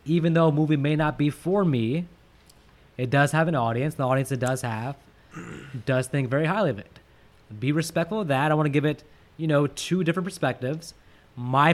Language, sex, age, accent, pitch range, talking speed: English, male, 20-39, American, 130-175 Hz, 205 wpm